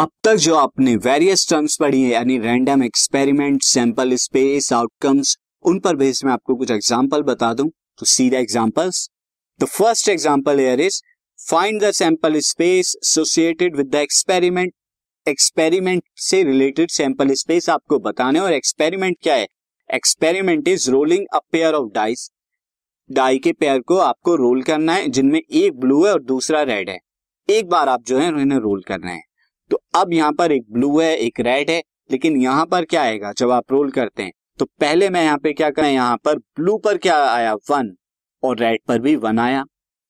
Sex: male